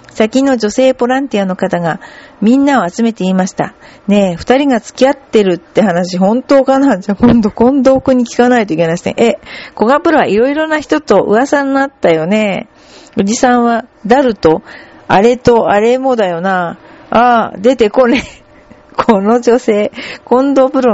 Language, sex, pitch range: Japanese, female, 200-260 Hz